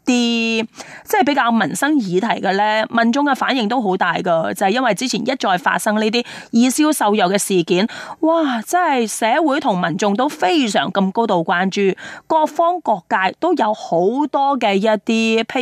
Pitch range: 195-260 Hz